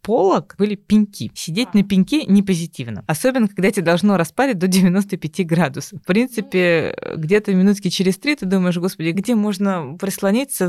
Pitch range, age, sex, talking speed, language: 150-195 Hz, 20-39, female, 150 wpm, Russian